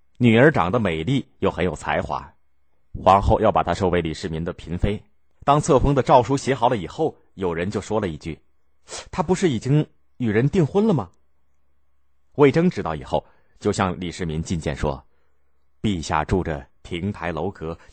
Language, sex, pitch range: Chinese, male, 75-120 Hz